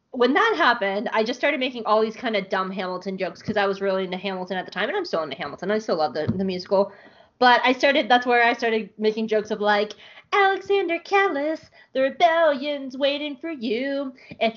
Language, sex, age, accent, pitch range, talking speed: English, female, 20-39, American, 200-275 Hz, 220 wpm